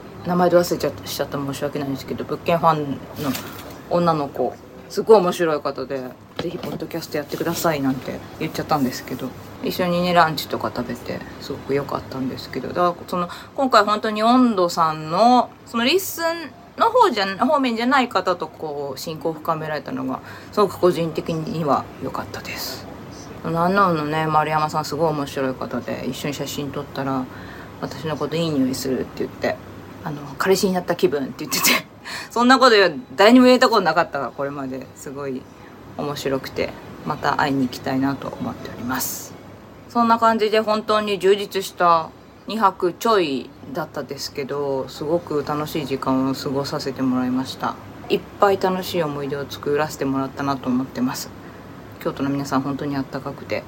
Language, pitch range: Japanese, 135-180 Hz